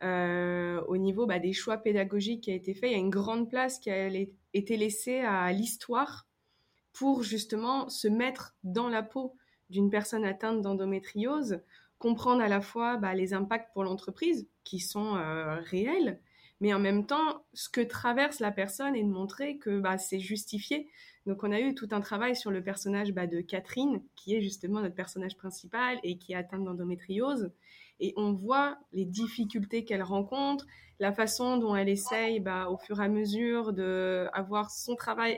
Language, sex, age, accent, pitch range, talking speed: French, female, 20-39, French, 190-235 Hz, 185 wpm